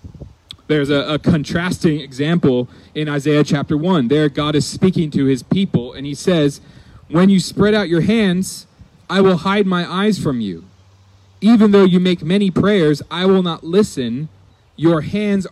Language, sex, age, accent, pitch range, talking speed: English, male, 30-49, American, 120-160 Hz, 170 wpm